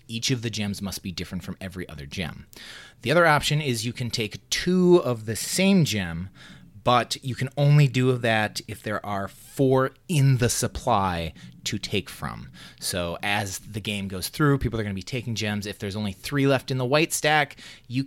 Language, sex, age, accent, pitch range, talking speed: English, male, 30-49, American, 105-135 Hz, 205 wpm